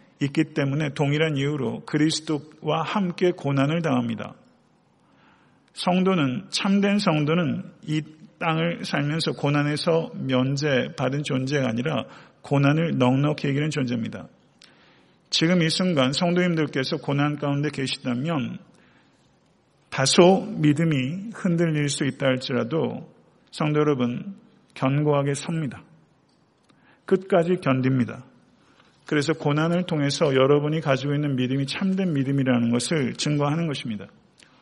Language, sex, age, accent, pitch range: Korean, male, 40-59, native, 140-180 Hz